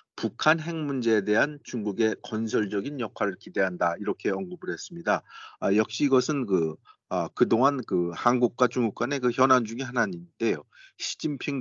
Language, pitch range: Korean, 110-145 Hz